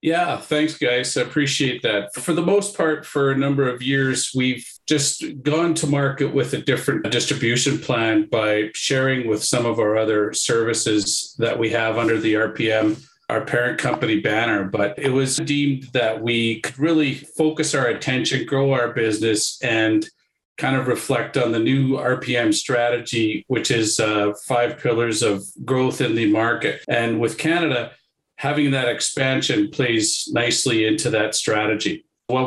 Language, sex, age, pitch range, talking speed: English, male, 40-59, 110-140 Hz, 165 wpm